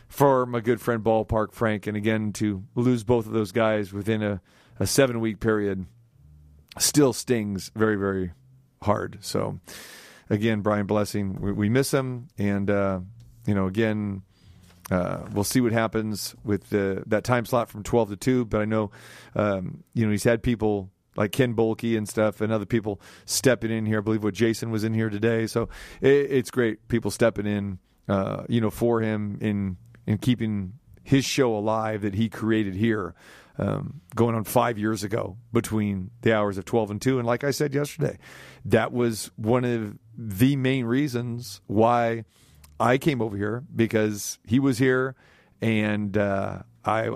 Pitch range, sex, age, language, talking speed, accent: 105-120 Hz, male, 40-59, English, 175 wpm, American